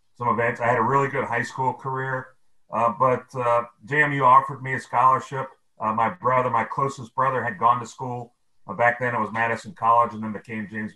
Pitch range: 110-140 Hz